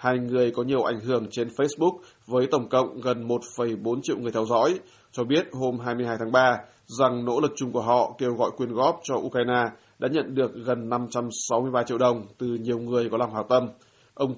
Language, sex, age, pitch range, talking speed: Vietnamese, male, 20-39, 115-125 Hz, 210 wpm